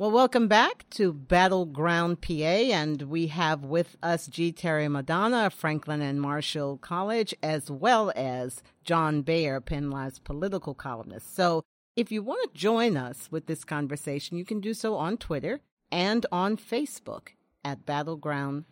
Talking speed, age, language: 150 wpm, 50-69, English